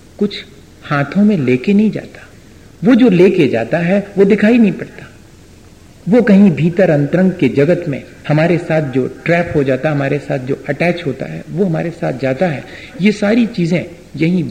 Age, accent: 50-69, native